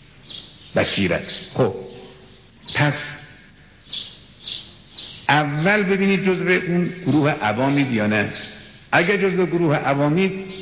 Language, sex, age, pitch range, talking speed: Persian, male, 60-79, 125-175 Hz, 75 wpm